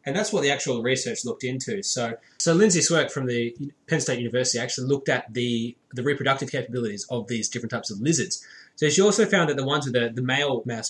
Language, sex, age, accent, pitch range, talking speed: English, male, 20-39, Australian, 120-155 Hz, 230 wpm